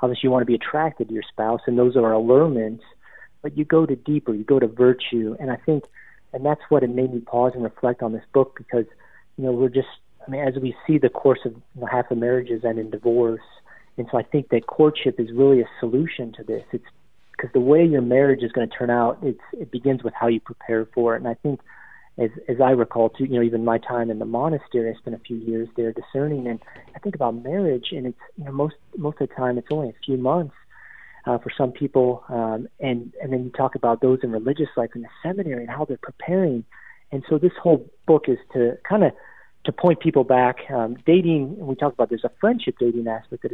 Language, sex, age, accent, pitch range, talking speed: English, male, 40-59, American, 120-140 Hz, 240 wpm